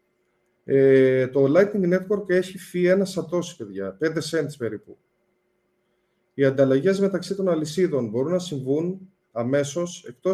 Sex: male